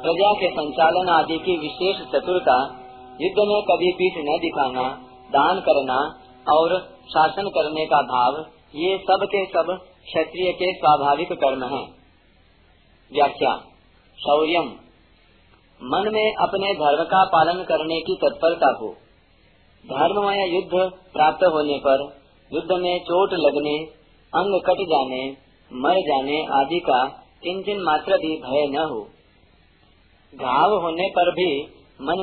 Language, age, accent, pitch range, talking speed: Hindi, 40-59, native, 135-185 Hz, 125 wpm